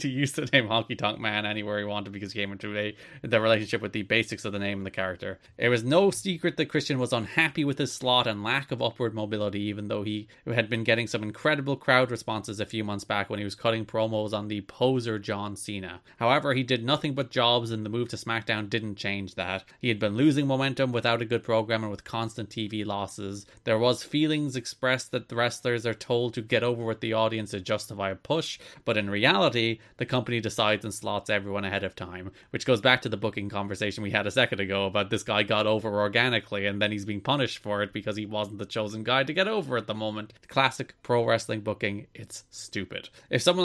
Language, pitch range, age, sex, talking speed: English, 105-130 Hz, 20-39, male, 235 wpm